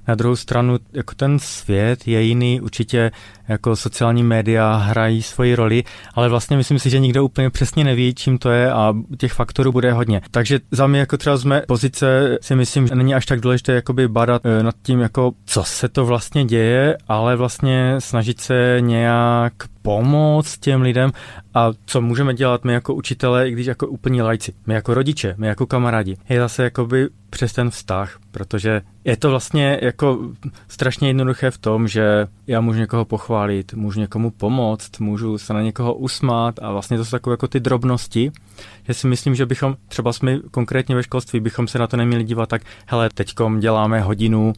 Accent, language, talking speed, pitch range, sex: native, Czech, 190 wpm, 110-130 Hz, male